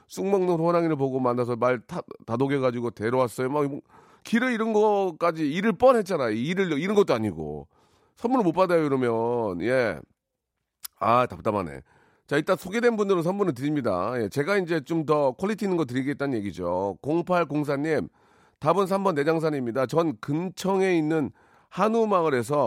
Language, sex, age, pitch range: Korean, male, 40-59, 125-170 Hz